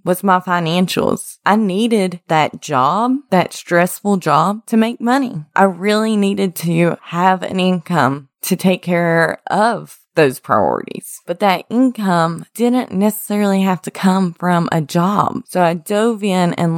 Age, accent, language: 20-39, American, English